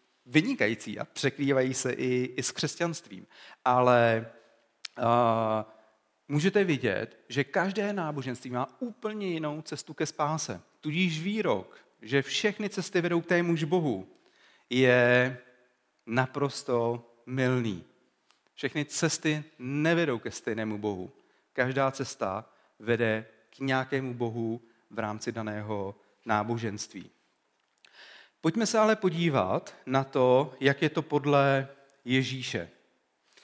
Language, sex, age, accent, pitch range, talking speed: Czech, male, 40-59, native, 120-160 Hz, 110 wpm